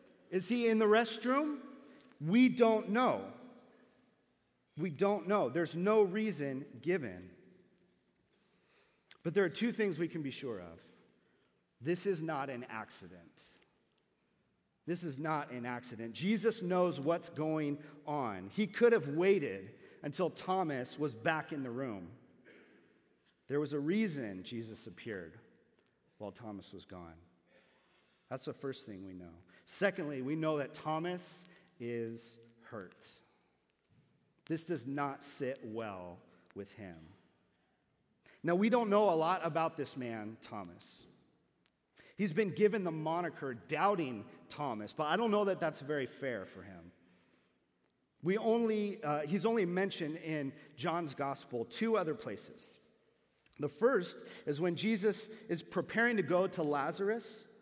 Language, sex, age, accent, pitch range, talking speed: English, male, 40-59, American, 130-205 Hz, 135 wpm